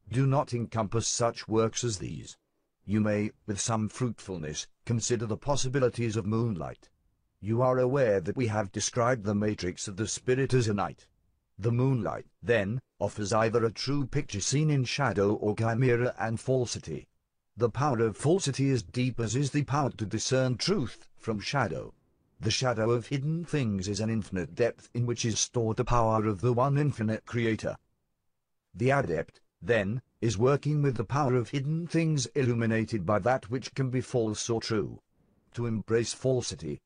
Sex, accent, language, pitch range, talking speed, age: male, British, English, 105-125 Hz, 170 wpm, 50-69